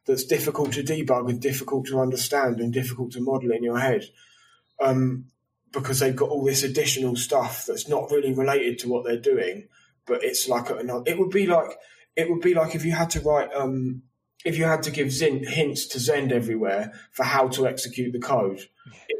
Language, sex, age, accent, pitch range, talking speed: English, male, 20-39, British, 120-150 Hz, 200 wpm